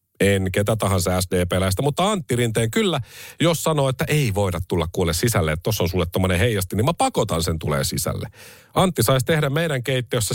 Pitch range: 100-145 Hz